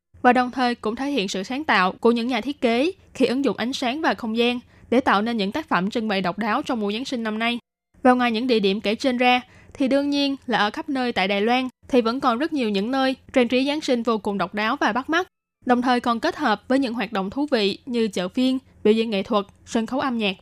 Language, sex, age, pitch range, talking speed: Vietnamese, female, 10-29, 215-260 Hz, 280 wpm